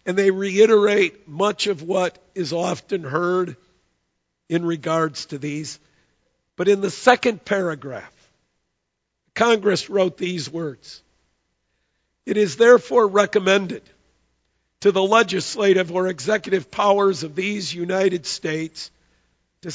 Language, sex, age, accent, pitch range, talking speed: English, male, 50-69, American, 165-205 Hz, 110 wpm